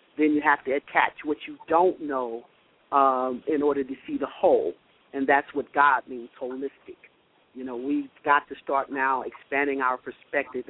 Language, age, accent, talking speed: English, 40-59, American, 180 wpm